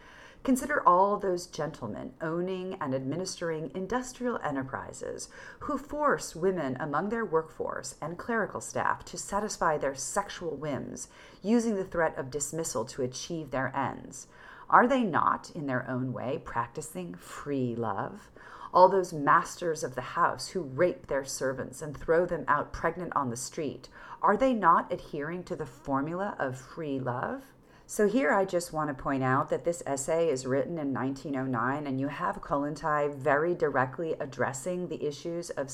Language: English